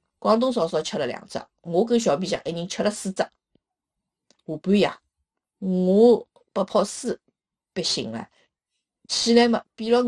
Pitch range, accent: 195-275 Hz, native